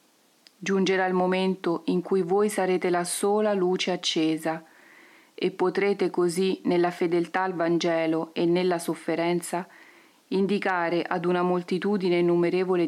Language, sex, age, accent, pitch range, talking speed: Italian, female, 40-59, native, 170-200 Hz, 120 wpm